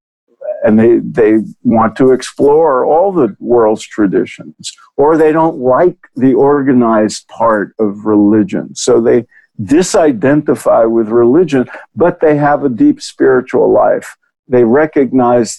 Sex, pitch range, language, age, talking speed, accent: male, 115-150 Hz, English, 50-69, 125 wpm, American